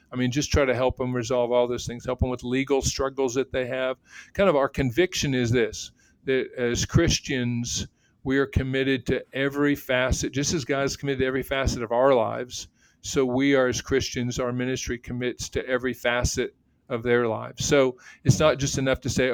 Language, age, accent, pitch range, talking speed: English, 50-69, American, 115-130 Hz, 200 wpm